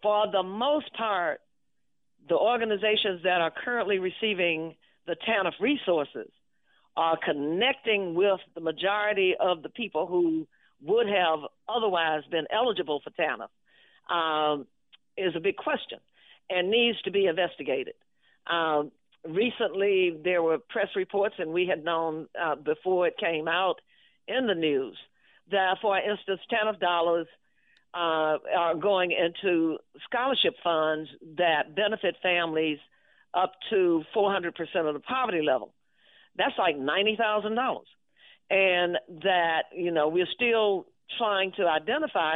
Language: English